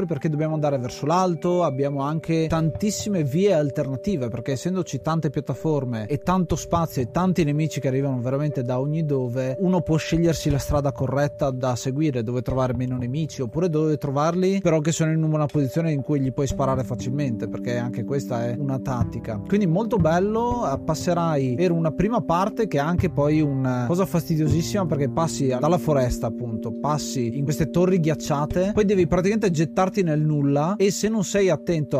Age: 30-49